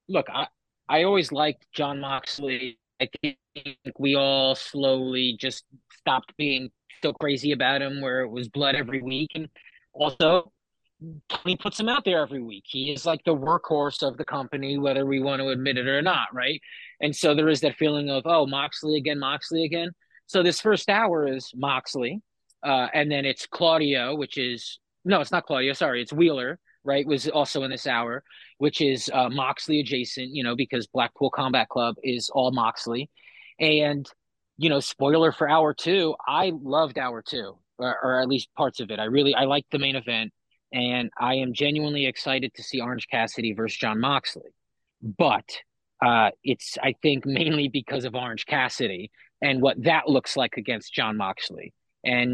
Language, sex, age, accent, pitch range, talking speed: English, male, 30-49, American, 130-150 Hz, 180 wpm